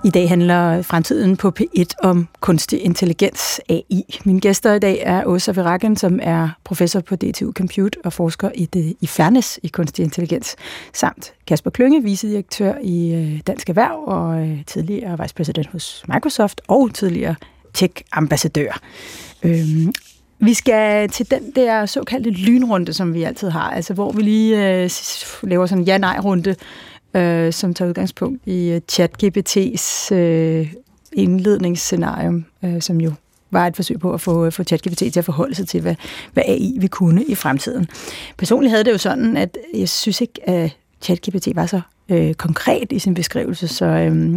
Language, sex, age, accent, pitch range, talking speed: Danish, female, 30-49, native, 170-215 Hz, 150 wpm